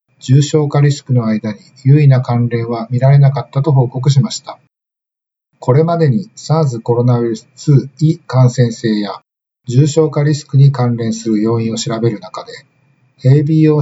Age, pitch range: 50-69, 125-155 Hz